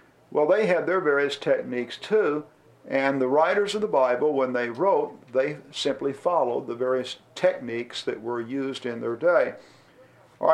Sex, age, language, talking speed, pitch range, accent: male, 50-69, English, 165 wpm, 130-160 Hz, American